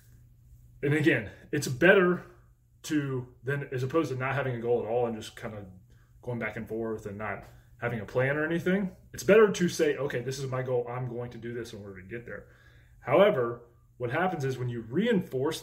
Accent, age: American, 20-39